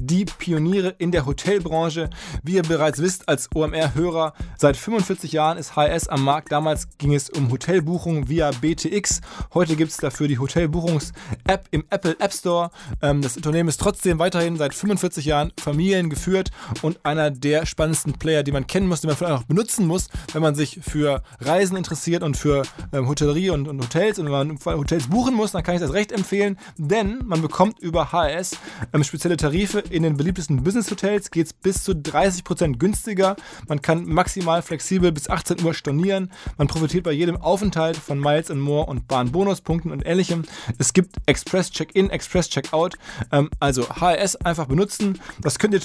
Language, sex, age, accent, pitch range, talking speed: German, male, 20-39, German, 145-180 Hz, 170 wpm